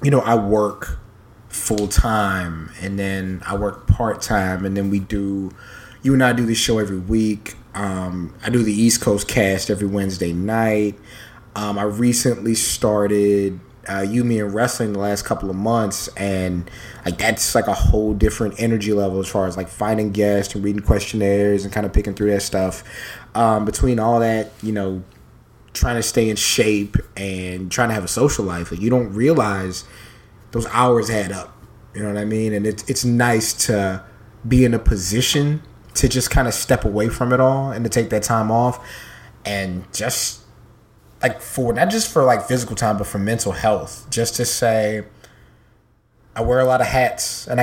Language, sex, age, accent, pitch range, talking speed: English, male, 20-39, American, 100-120 Hz, 190 wpm